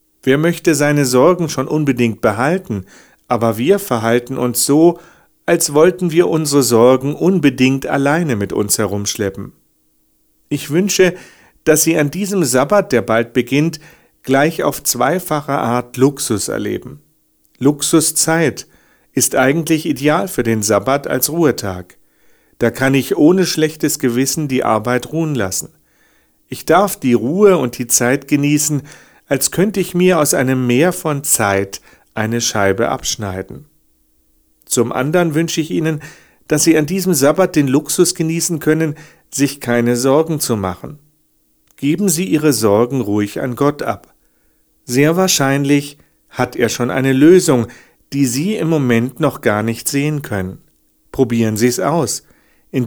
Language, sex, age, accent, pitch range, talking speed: German, male, 40-59, German, 120-160 Hz, 140 wpm